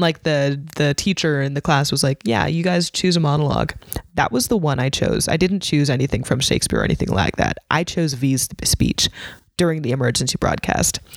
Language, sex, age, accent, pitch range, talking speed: English, female, 20-39, American, 145-180 Hz, 210 wpm